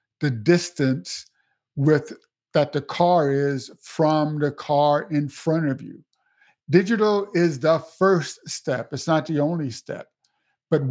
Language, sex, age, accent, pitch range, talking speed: English, male, 50-69, American, 140-165 Hz, 140 wpm